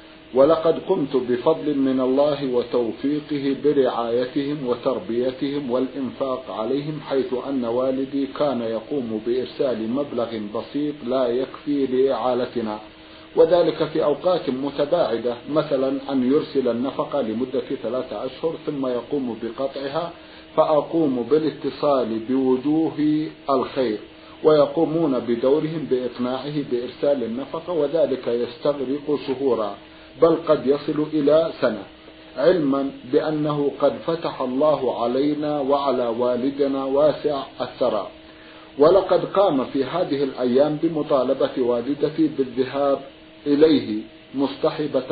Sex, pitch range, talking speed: male, 130-150 Hz, 95 wpm